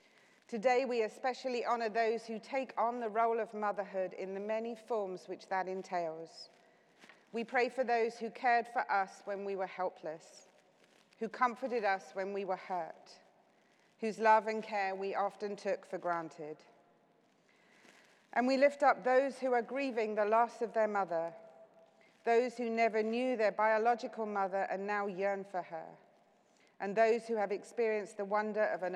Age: 40-59